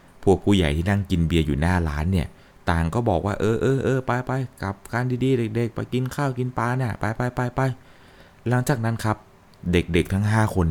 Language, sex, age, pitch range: Thai, male, 20-39, 80-110 Hz